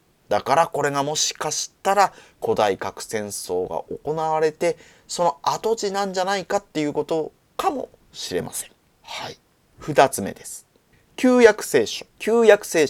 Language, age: Japanese, 30-49